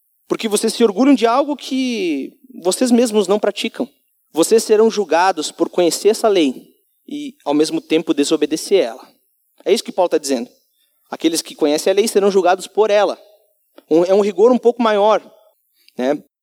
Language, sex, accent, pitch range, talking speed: Portuguese, male, Brazilian, 175-230 Hz, 170 wpm